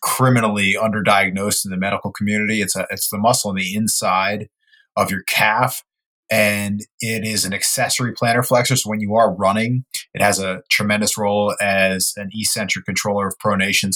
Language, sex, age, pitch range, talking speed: English, male, 30-49, 95-110 Hz, 170 wpm